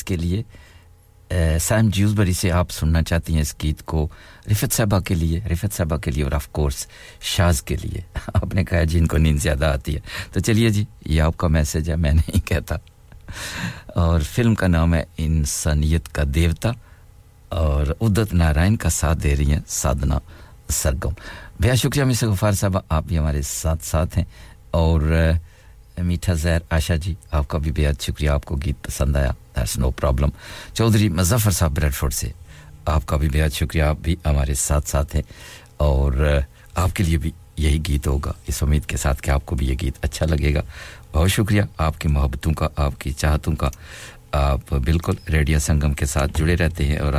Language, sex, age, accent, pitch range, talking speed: English, male, 60-79, Indian, 75-95 Hz, 150 wpm